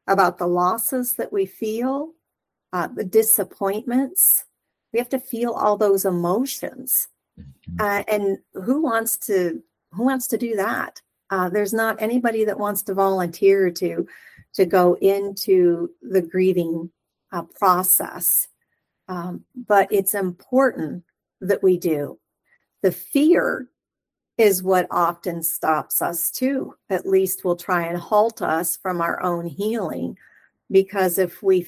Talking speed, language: 135 wpm, English